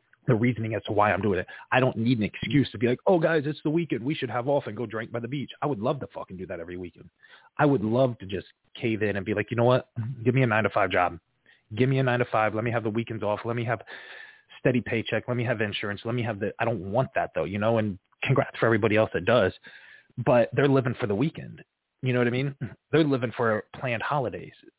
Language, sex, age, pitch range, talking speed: English, male, 30-49, 110-130 Hz, 280 wpm